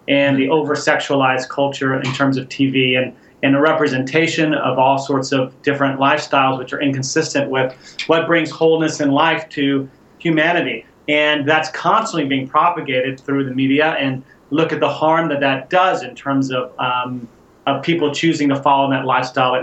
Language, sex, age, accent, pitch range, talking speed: English, male, 30-49, American, 135-160 Hz, 170 wpm